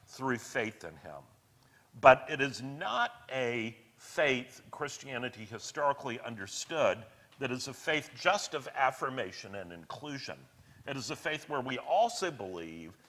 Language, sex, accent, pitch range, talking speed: English, male, American, 125-180 Hz, 140 wpm